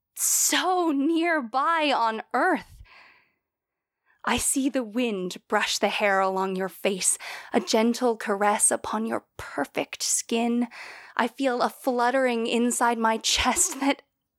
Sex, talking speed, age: female, 120 wpm, 20-39